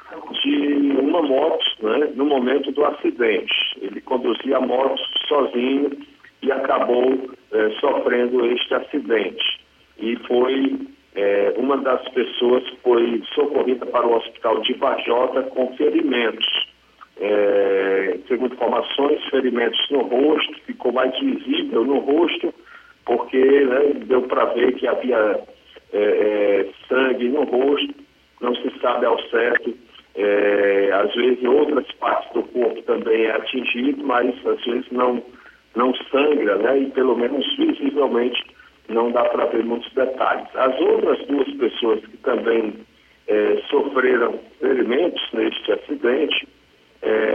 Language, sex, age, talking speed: Portuguese, male, 50-69, 125 wpm